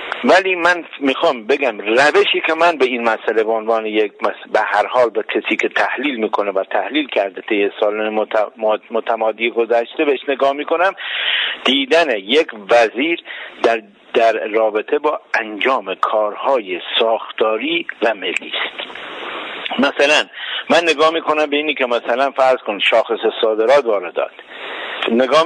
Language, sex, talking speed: Persian, male, 135 wpm